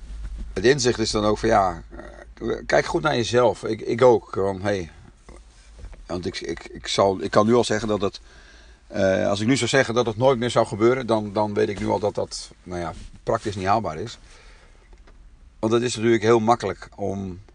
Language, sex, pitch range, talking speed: Dutch, male, 90-115 Hz, 210 wpm